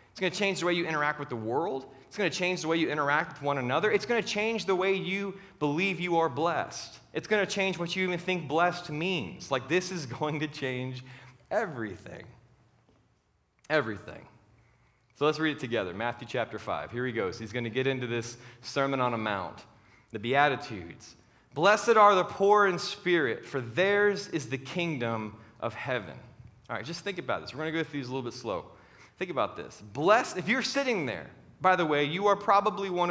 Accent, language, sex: American, English, male